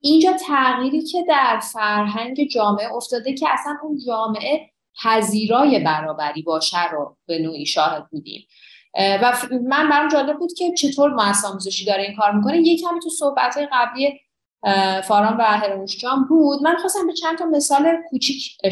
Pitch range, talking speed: 195-290 Hz, 150 wpm